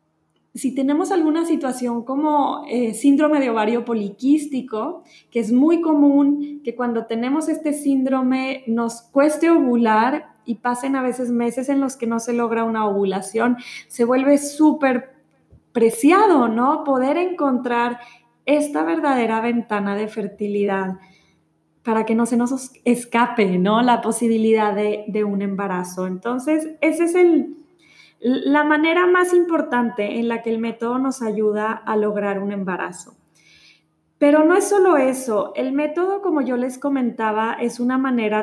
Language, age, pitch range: Spanish, 20-39, 220-285 Hz